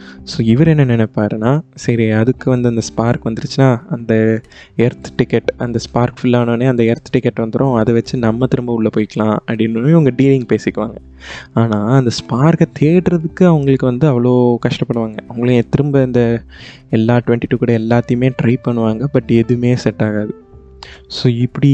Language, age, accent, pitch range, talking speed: Tamil, 20-39, native, 115-135 Hz, 145 wpm